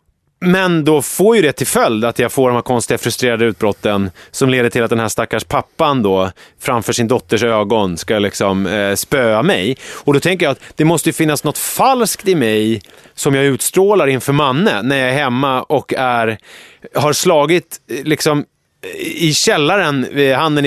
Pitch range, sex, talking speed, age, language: 125-170 Hz, male, 185 wpm, 30-49, English